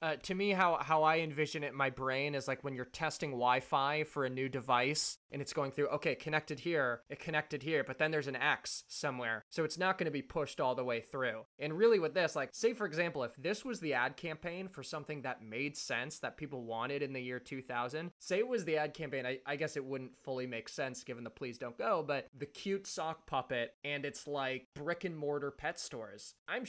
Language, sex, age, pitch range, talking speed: English, male, 20-39, 130-155 Hz, 240 wpm